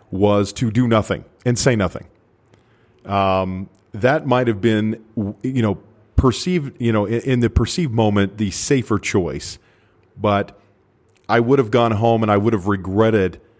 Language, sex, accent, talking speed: English, male, American, 160 wpm